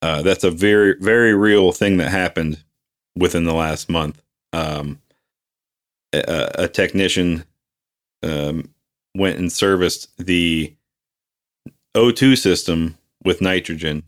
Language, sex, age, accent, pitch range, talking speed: English, male, 30-49, American, 80-105 Hz, 110 wpm